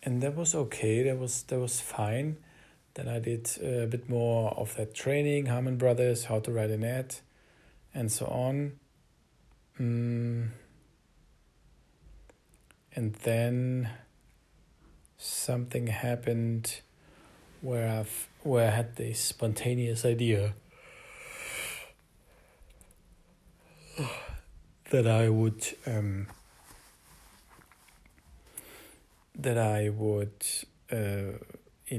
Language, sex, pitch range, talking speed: English, male, 105-125 Hz, 95 wpm